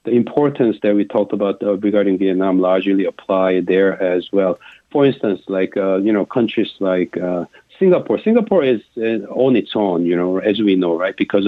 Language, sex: English, male